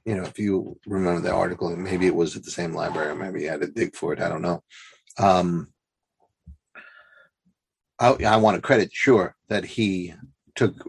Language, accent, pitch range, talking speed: English, American, 90-110 Hz, 180 wpm